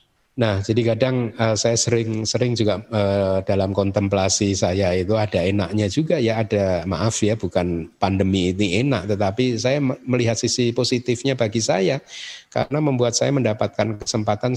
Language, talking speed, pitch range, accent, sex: Indonesian, 145 wpm, 95-120 Hz, native, male